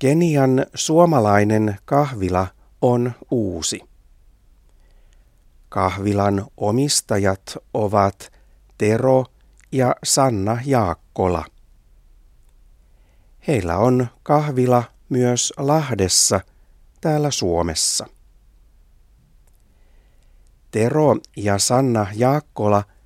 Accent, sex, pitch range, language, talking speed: native, male, 90-125 Hz, Finnish, 60 wpm